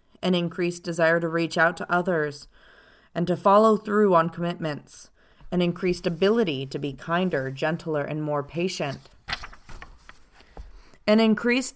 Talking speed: 135 wpm